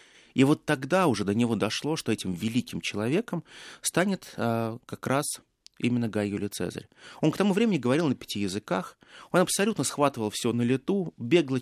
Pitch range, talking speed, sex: 115-155 Hz, 170 wpm, male